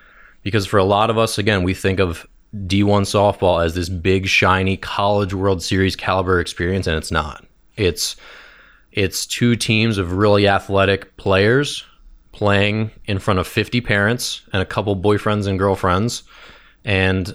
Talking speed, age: 155 wpm, 30-49